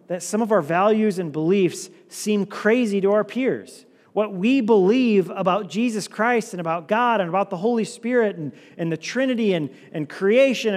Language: English